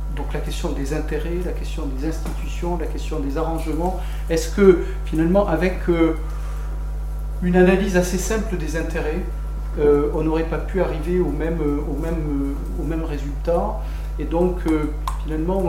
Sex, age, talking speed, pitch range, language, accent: male, 40-59, 145 wpm, 145-170 Hz, French, French